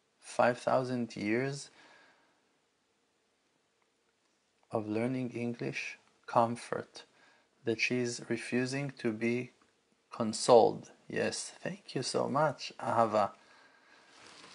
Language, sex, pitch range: English, male, 115-130 Hz